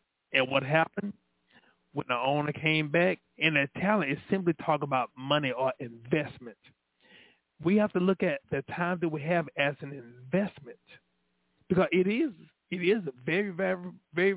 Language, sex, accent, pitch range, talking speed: English, male, American, 125-175 Hz, 160 wpm